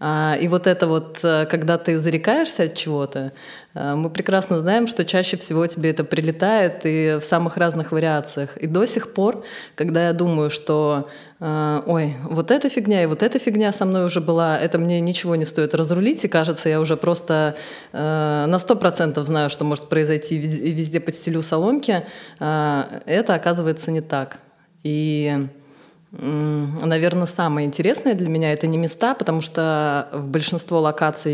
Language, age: Russian, 20-39